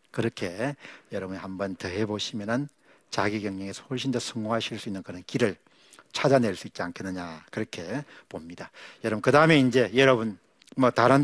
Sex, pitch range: male, 100-130 Hz